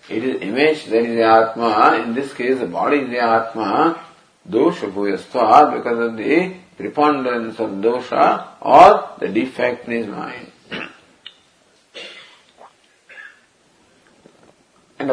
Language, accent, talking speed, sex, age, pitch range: English, Indian, 120 wpm, male, 50-69, 120-150 Hz